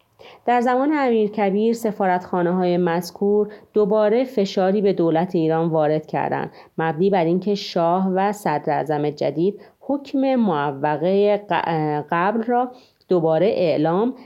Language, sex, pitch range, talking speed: Persian, female, 165-220 Hz, 110 wpm